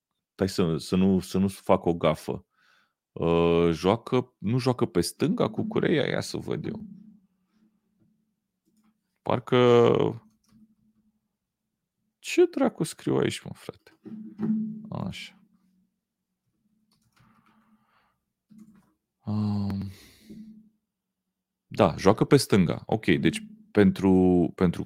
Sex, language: male, Romanian